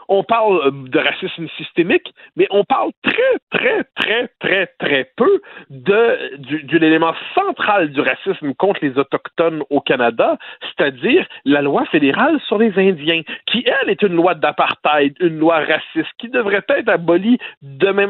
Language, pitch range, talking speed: French, 155-230 Hz, 155 wpm